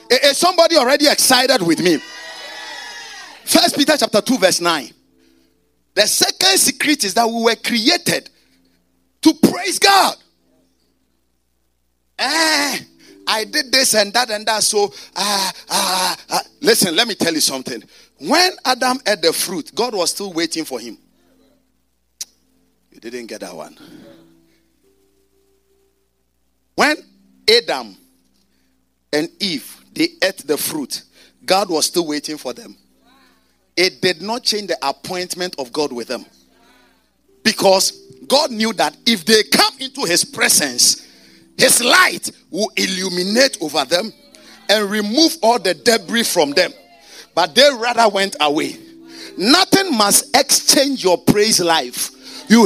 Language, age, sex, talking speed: English, 50-69, male, 130 wpm